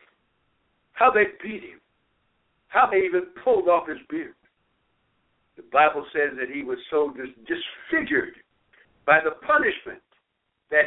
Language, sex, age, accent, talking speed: English, male, 60-79, American, 125 wpm